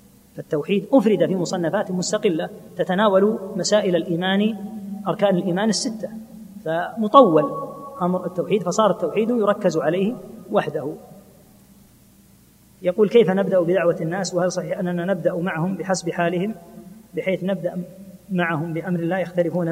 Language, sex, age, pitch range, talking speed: Arabic, female, 30-49, 175-210 Hz, 115 wpm